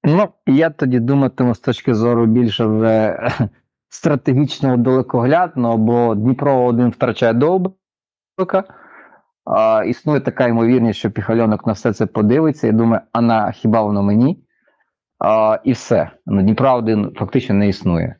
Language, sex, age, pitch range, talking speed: Ukrainian, male, 30-49, 100-125 Hz, 130 wpm